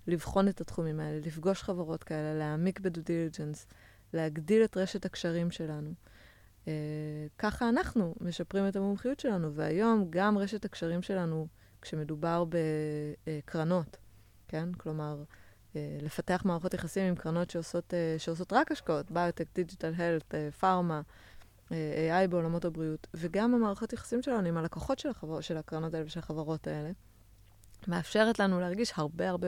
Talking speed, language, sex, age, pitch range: 140 wpm, Hebrew, female, 20-39, 150-185 Hz